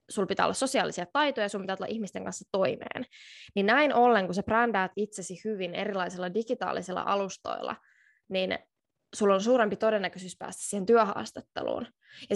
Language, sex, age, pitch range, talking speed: Finnish, female, 20-39, 185-220 Hz, 155 wpm